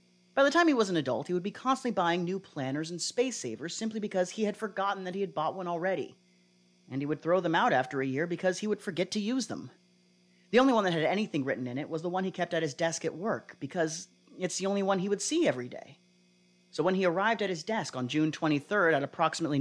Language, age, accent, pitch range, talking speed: English, 30-49, American, 130-185 Hz, 260 wpm